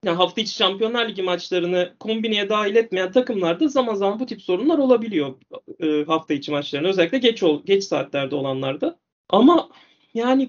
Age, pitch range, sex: 30-49, 160-245 Hz, male